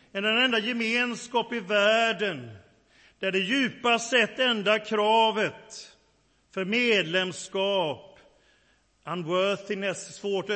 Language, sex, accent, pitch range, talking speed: Swedish, male, native, 150-215 Hz, 85 wpm